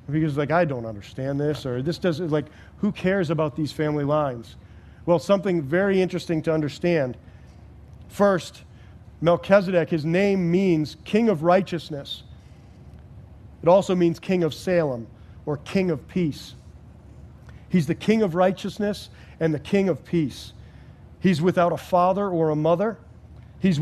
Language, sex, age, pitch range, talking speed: English, male, 40-59, 140-180 Hz, 145 wpm